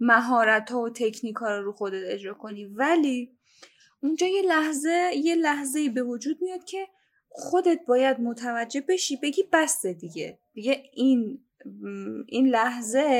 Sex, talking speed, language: female, 135 wpm, Persian